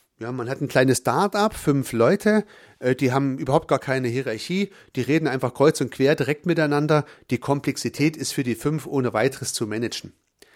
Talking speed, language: 180 wpm, German